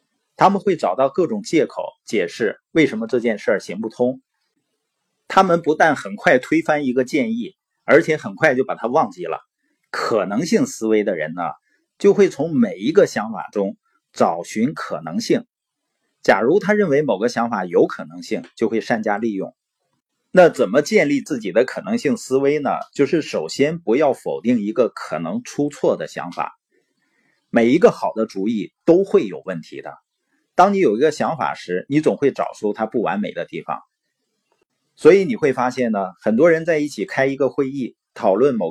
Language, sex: Chinese, male